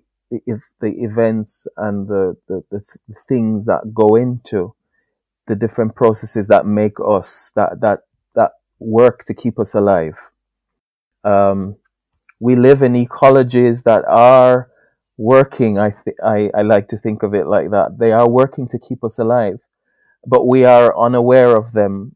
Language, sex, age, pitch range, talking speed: English, male, 20-39, 115-135 Hz, 155 wpm